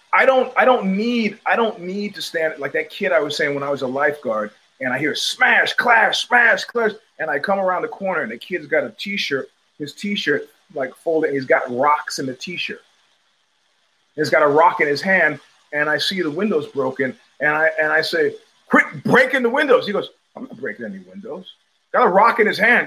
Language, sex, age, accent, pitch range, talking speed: English, male, 30-49, American, 155-215 Hz, 230 wpm